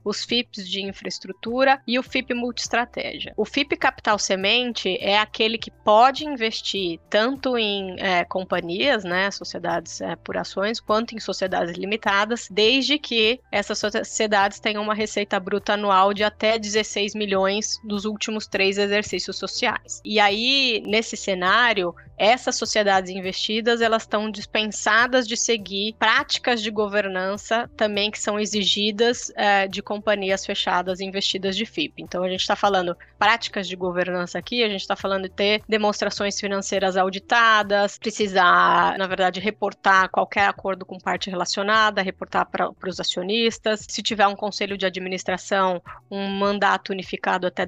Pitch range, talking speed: 195-225 Hz, 140 wpm